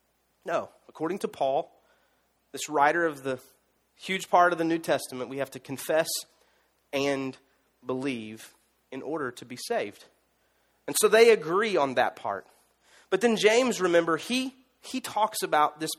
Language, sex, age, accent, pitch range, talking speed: English, male, 30-49, American, 155-230 Hz, 155 wpm